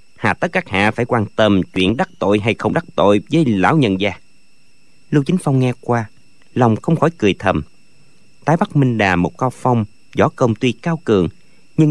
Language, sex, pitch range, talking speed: Vietnamese, male, 100-150 Hz, 205 wpm